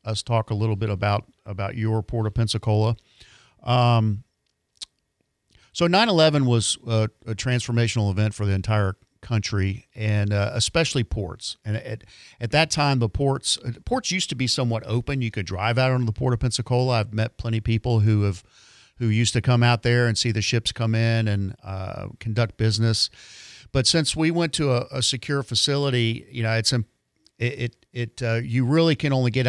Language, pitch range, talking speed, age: English, 110-125 Hz, 190 wpm, 50-69